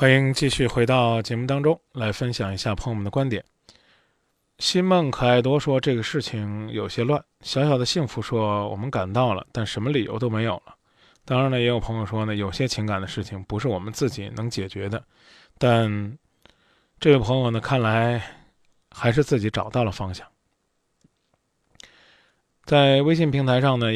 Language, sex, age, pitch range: Chinese, male, 20-39, 105-135 Hz